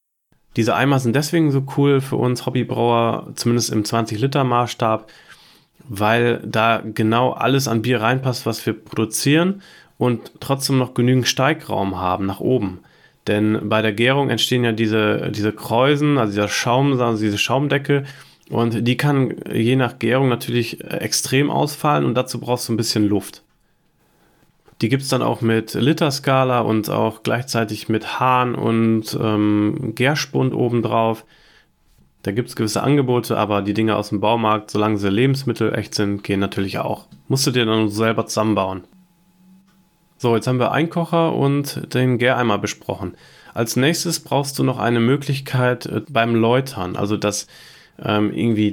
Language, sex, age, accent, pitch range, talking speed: German, male, 30-49, German, 110-135 Hz, 155 wpm